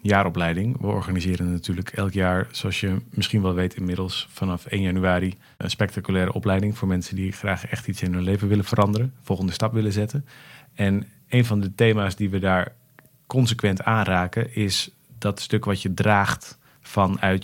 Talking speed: 170 wpm